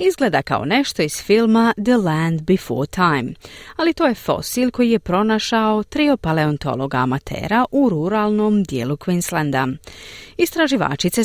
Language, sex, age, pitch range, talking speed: Croatian, female, 30-49, 155-230 Hz, 130 wpm